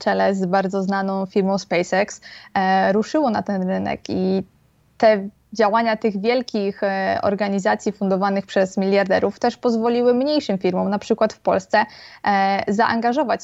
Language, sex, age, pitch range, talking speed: Polish, female, 20-39, 195-225 Hz, 125 wpm